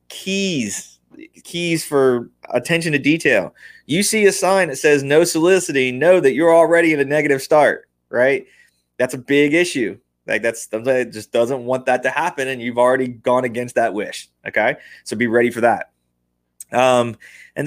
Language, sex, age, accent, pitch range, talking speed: English, male, 20-39, American, 125-165 Hz, 175 wpm